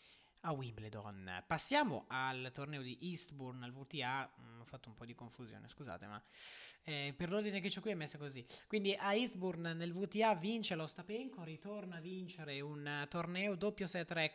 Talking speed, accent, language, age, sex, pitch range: 175 wpm, native, Italian, 20-39, male, 130-170 Hz